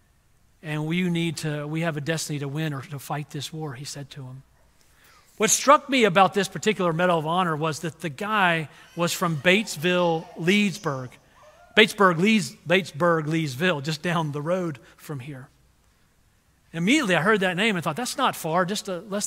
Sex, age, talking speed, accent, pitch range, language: male, 40-59, 185 wpm, American, 155-195 Hz, English